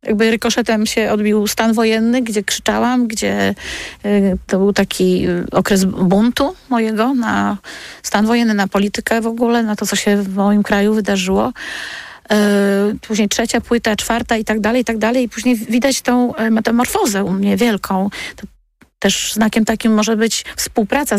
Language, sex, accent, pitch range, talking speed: Polish, female, native, 195-230 Hz, 155 wpm